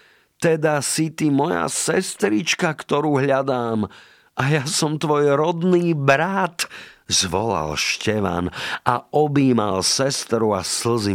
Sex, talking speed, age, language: male, 110 wpm, 50-69, Slovak